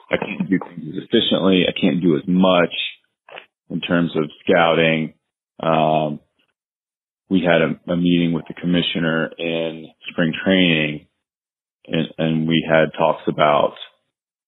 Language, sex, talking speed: English, male, 135 wpm